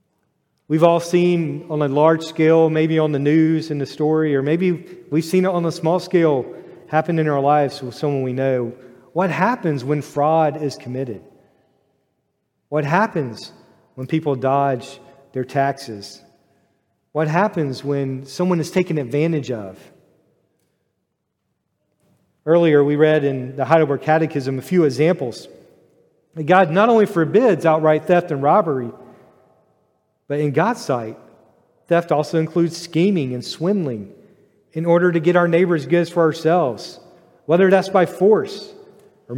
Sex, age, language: male, 40-59, English